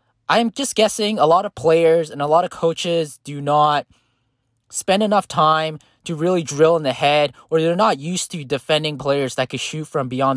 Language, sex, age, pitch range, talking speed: English, male, 20-39, 135-170 Hz, 205 wpm